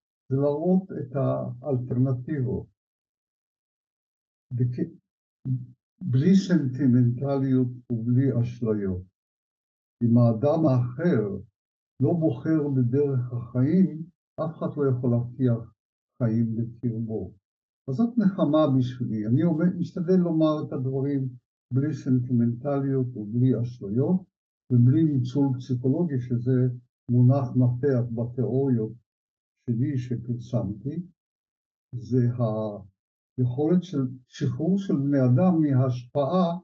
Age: 60-79